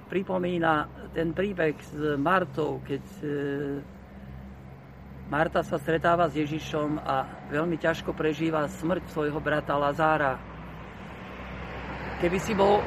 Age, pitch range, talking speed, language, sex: 50-69, 150-180 Hz, 105 wpm, Slovak, male